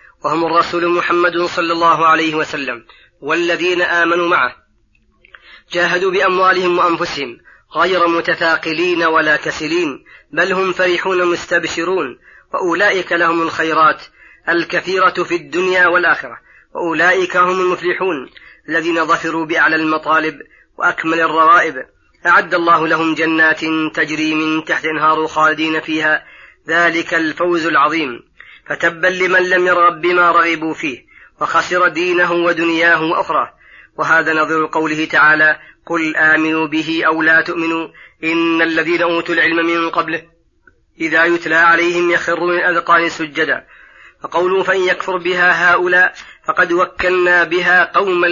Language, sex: Arabic, female